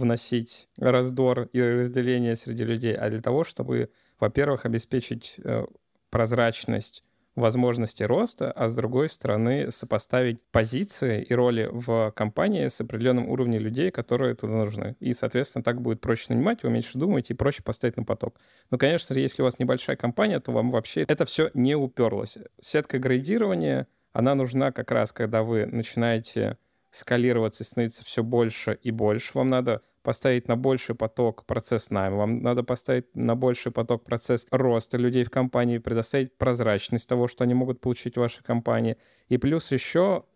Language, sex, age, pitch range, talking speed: Russian, male, 20-39, 115-125 Hz, 160 wpm